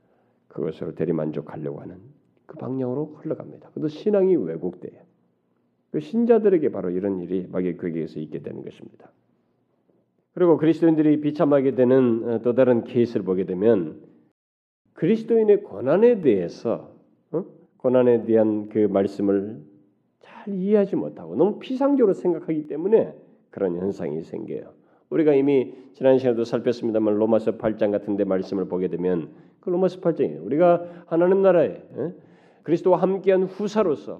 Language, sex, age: Korean, male, 40-59